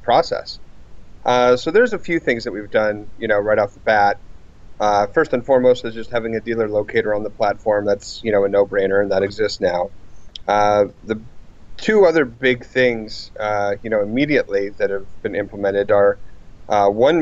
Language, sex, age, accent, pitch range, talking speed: English, male, 30-49, American, 105-125 Hz, 190 wpm